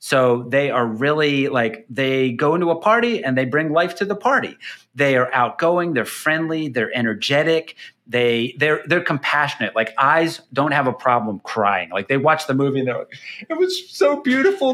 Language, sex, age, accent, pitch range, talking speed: English, male, 40-59, American, 120-165 Hz, 190 wpm